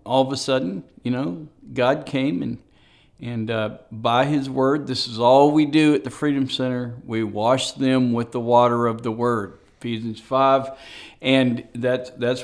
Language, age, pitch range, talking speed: English, 50-69, 115-145 Hz, 180 wpm